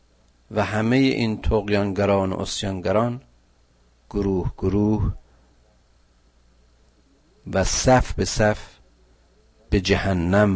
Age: 50-69